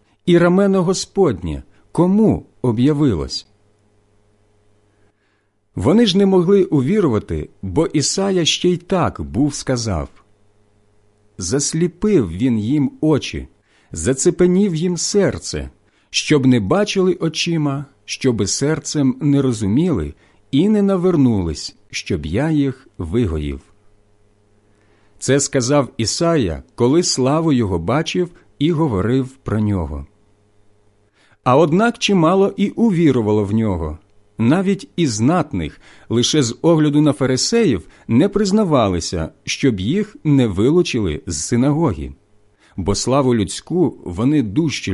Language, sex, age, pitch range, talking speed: Ukrainian, male, 50-69, 100-160 Hz, 105 wpm